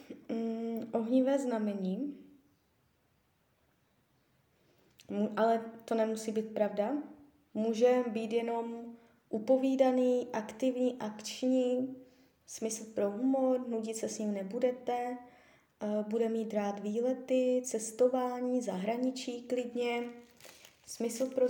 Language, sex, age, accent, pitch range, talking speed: Czech, female, 20-39, native, 225-255 Hz, 85 wpm